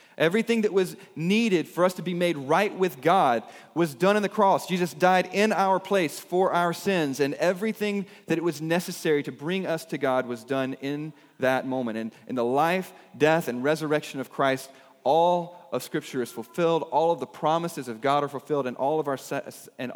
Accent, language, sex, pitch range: American, English, male, 140-190 Hz